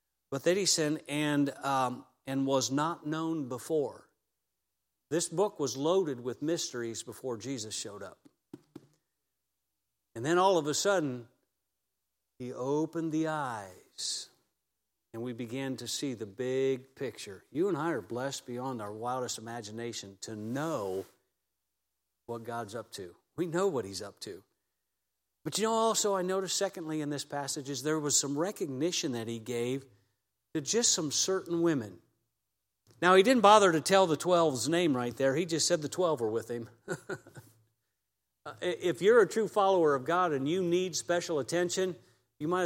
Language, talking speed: English, 160 wpm